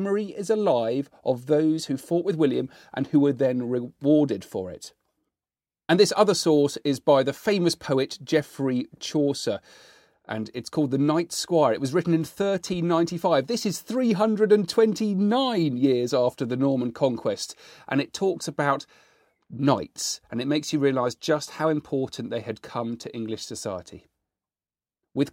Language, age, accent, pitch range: English, 40-59, British, 125-155 Hz